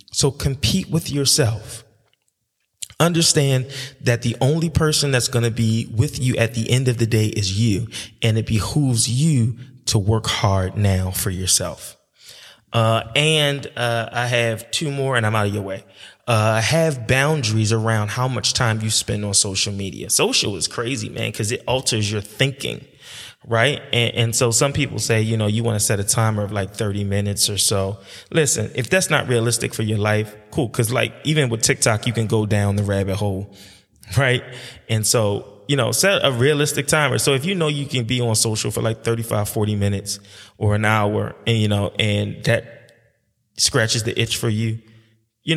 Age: 20-39